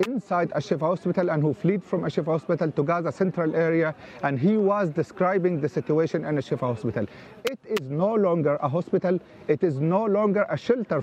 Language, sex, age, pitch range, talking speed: English, male, 40-59, 165-205 Hz, 185 wpm